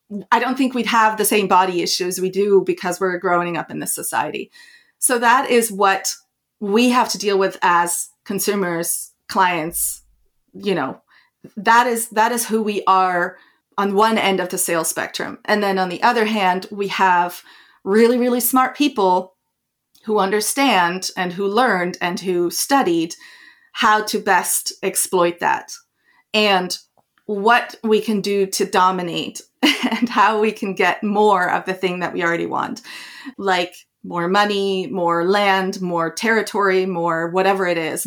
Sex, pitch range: female, 185-225 Hz